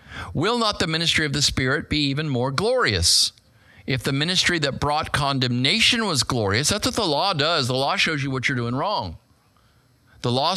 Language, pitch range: English, 115-160 Hz